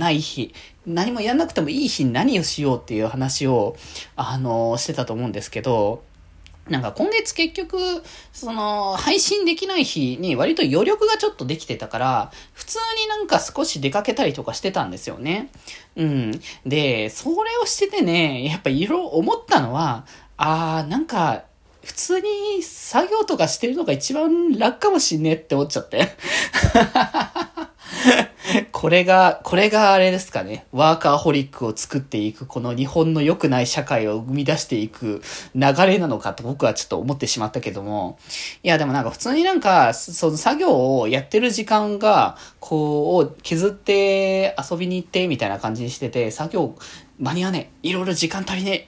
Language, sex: Japanese, male